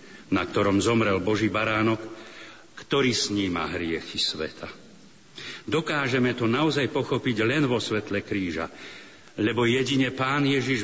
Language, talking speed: Slovak, 120 wpm